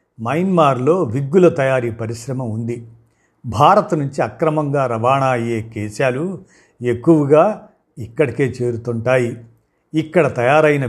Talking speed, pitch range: 90 wpm, 120-155 Hz